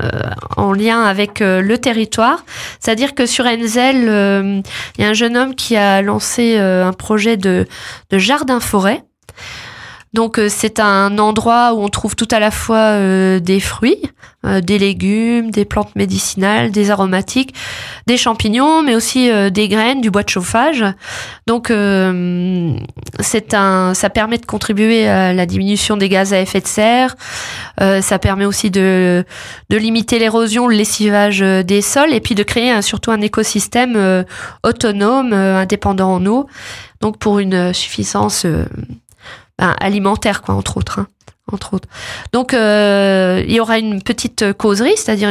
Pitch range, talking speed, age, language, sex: 190-230 Hz, 170 wpm, 20-39, French, female